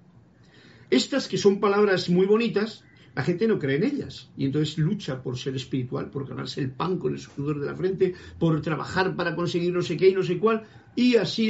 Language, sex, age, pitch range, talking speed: Spanish, male, 50-69, 140-185 Hz, 215 wpm